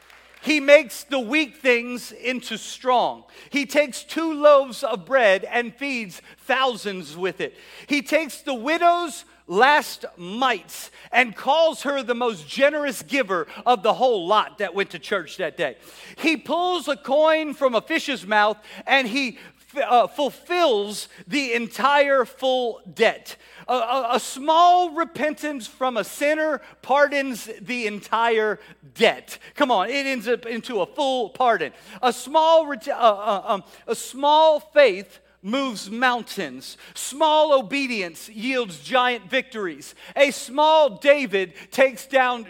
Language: English